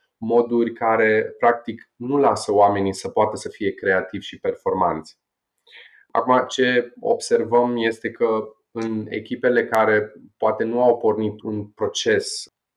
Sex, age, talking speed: male, 20-39, 125 wpm